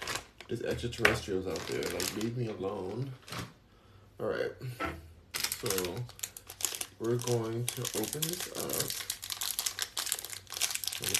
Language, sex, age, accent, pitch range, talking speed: English, male, 20-39, American, 105-125 Hz, 90 wpm